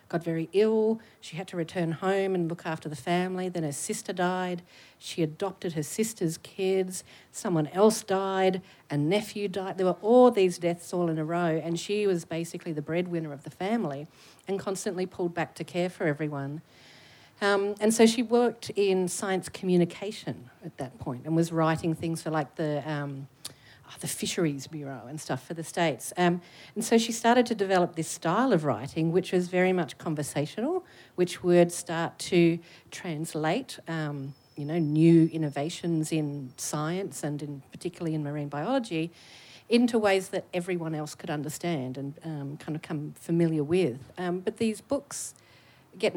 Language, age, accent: English, 50-69, Australian